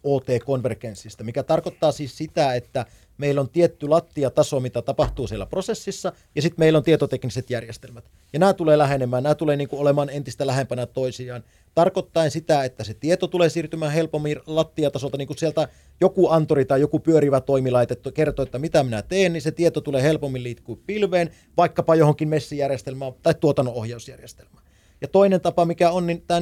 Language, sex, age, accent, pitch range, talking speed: Finnish, male, 30-49, native, 135-170 Hz, 170 wpm